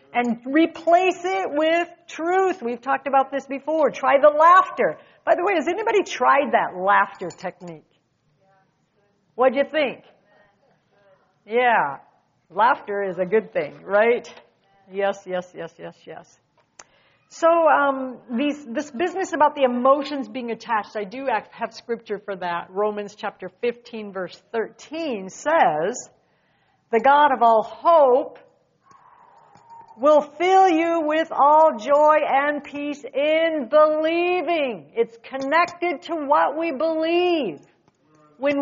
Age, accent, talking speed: 60-79, American, 125 wpm